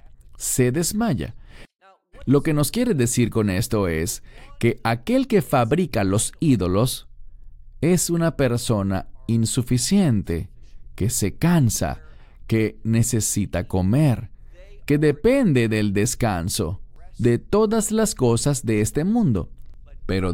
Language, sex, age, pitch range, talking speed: English, male, 40-59, 105-145 Hz, 110 wpm